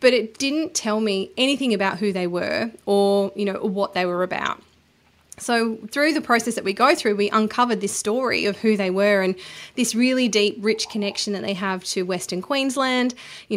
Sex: female